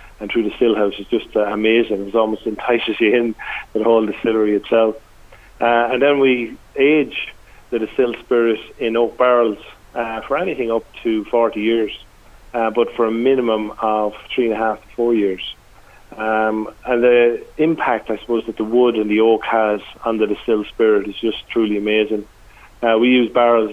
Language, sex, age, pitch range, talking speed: English, male, 40-59, 105-120 Hz, 185 wpm